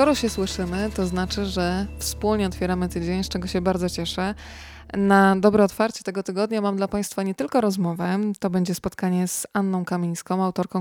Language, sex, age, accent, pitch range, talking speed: Polish, female, 20-39, native, 185-210 Hz, 180 wpm